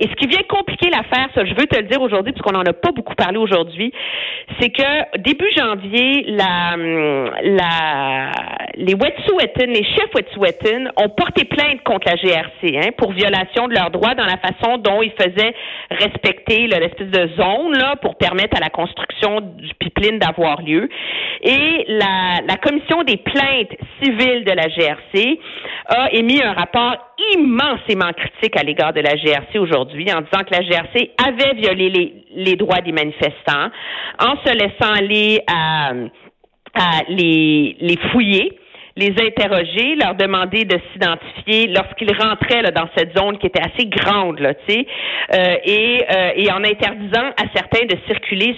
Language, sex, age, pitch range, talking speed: French, female, 50-69, 185-255 Hz, 165 wpm